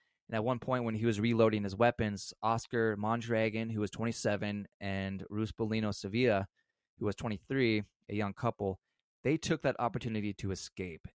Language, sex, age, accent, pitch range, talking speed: English, male, 20-39, American, 105-120 Hz, 160 wpm